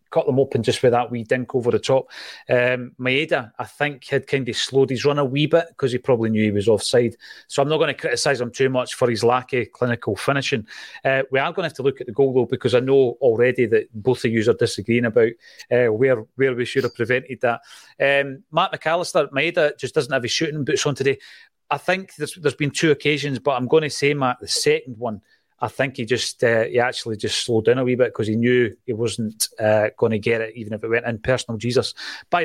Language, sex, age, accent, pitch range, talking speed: English, male, 30-49, British, 120-145 Hz, 250 wpm